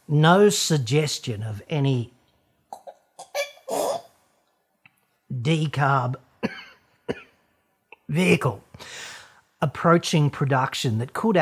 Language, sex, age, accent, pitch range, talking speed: English, male, 50-69, Australian, 125-180 Hz, 55 wpm